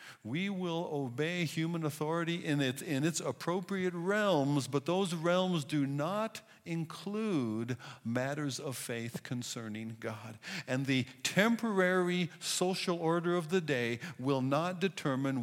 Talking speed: 130 wpm